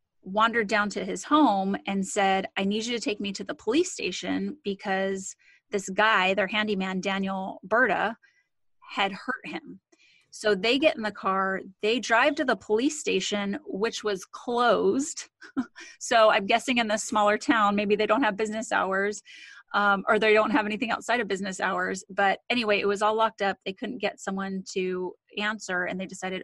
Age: 30-49